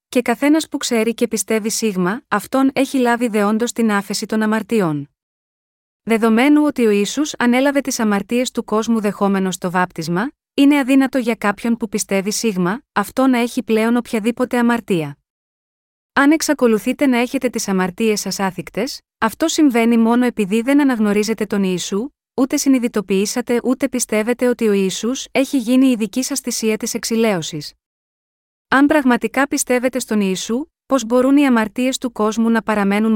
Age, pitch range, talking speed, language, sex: 30-49, 205-255 Hz, 150 wpm, Greek, female